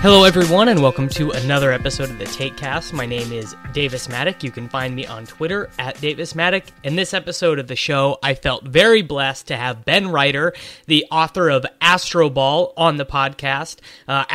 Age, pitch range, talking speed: 30-49, 135-165 Hz, 195 wpm